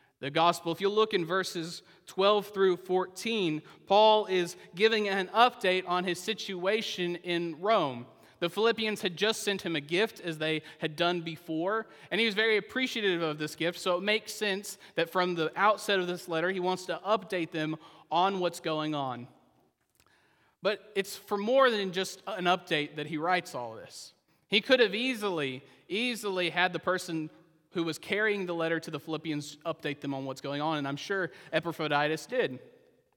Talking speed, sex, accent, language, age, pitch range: 185 wpm, male, American, English, 30-49, 170-215 Hz